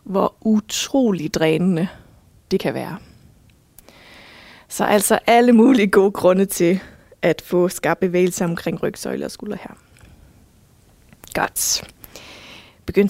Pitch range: 185-240 Hz